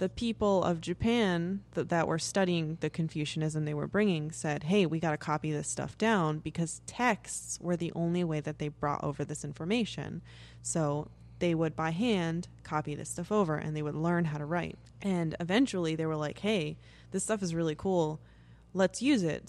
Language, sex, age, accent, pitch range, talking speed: English, female, 20-39, American, 155-190 Hz, 195 wpm